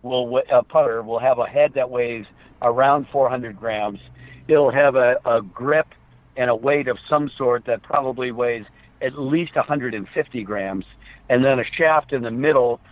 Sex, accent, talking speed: male, American, 170 wpm